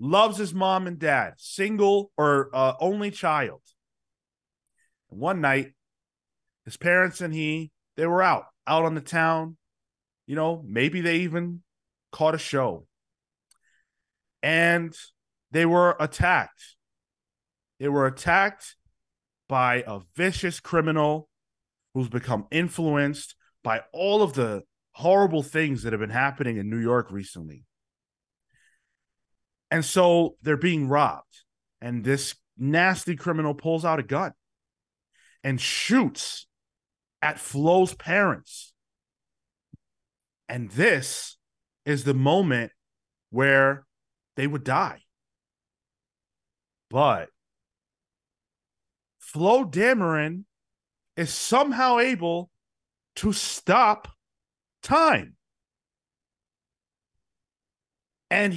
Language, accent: English, American